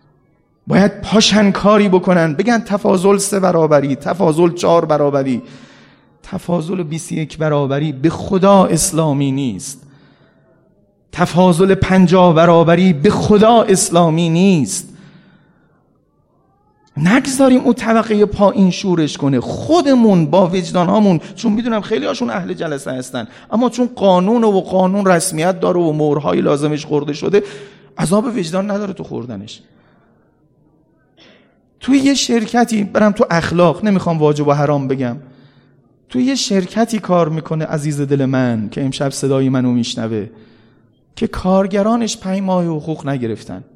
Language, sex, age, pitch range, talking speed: Persian, male, 40-59, 145-200 Hz, 120 wpm